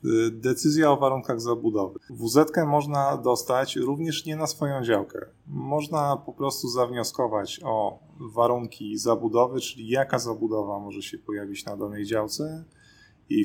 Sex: male